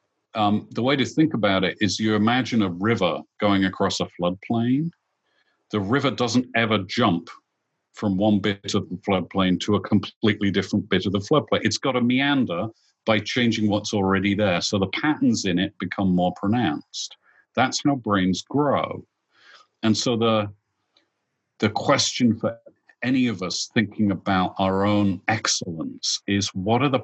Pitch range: 95-115 Hz